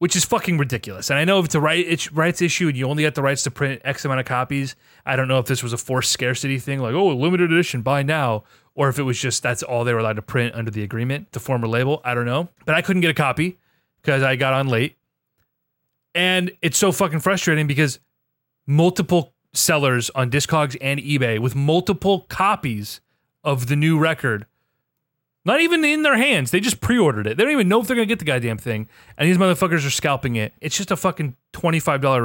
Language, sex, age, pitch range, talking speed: English, male, 30-49, 125-170 Hz, 230 wpm